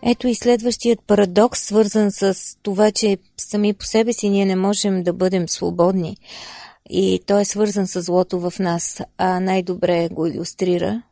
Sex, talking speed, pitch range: female, 160 wpm, 180-215 Hz